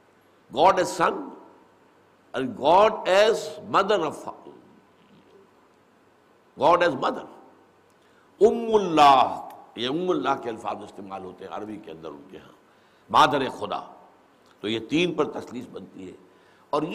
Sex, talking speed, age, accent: male, 120 wpm, 60-79, Indian